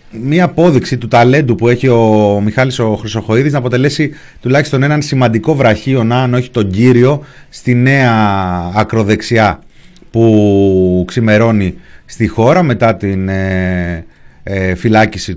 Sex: male